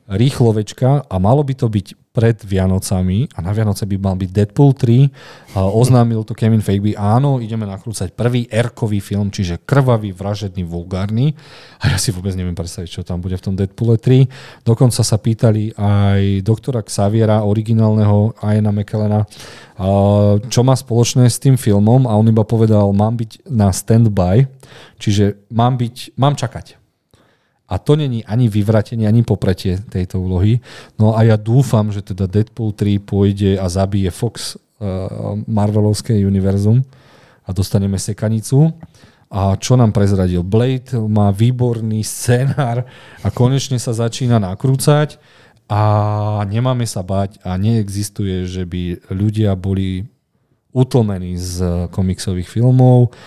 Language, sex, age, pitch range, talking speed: Slovak, male, 40-59, 100-120 Hz, 140 wpm